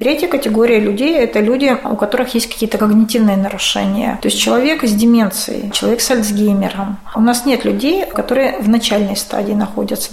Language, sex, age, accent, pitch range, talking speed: Russian, female, 30-49, native, 210-245 Hz, 165 wpm